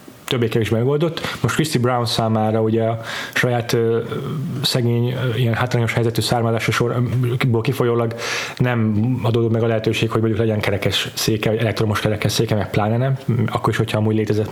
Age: 30-49